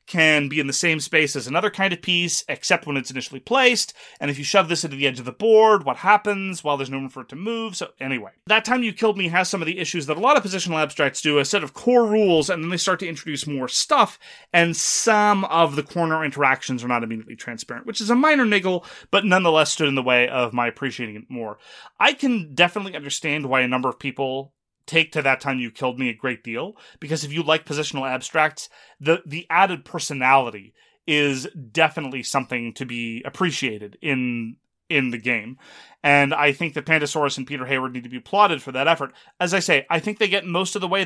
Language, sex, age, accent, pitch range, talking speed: English, male, 30-49, American, 135-185 Hz, 235 wpm